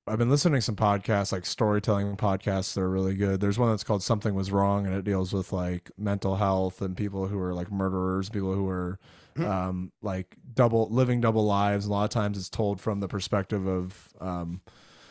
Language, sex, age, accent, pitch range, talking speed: English, male, 20-39, American, 100-115 Hz, 210 wpm